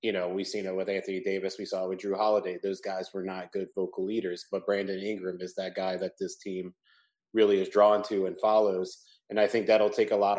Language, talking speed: English, 250 wpm